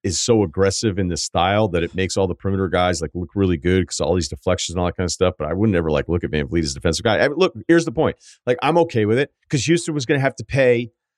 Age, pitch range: 40-59, 95-130 Hz